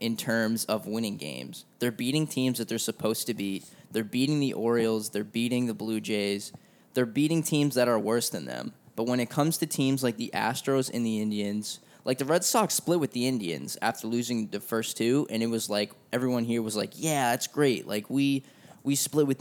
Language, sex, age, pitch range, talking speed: English, male, 10-29, 110-135 Hz, 220 wpm